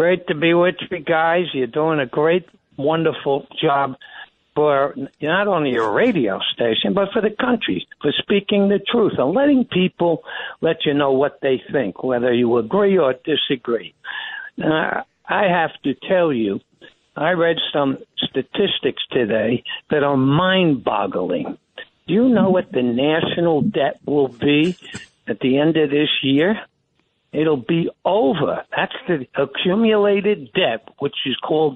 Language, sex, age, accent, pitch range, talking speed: English, male, 60-79, American, 150-205 Hz, 150 wpm